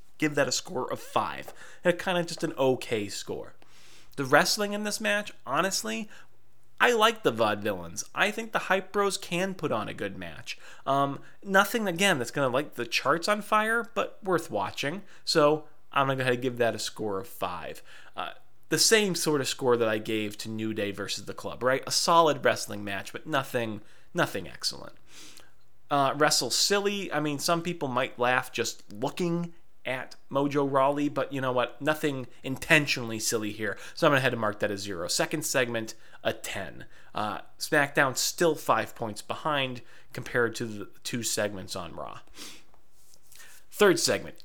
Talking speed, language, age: 185 wpm, English, 30-49